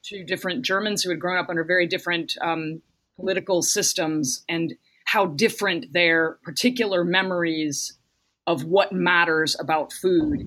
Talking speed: 140 wpm